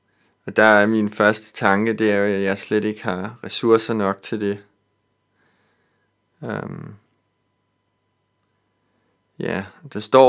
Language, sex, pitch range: Danish, male, 100-115 Hz